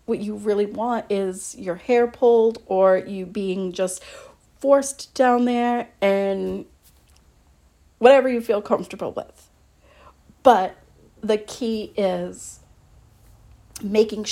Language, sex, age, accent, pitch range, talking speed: English, female, 40-59, American, 175-230 Hz, 110 wpm